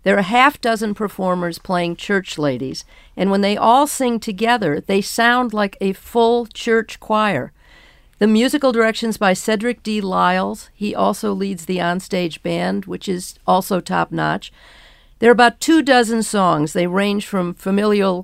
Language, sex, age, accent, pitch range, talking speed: English, female, 50-69, American, 175-215 Hz, 160 wpm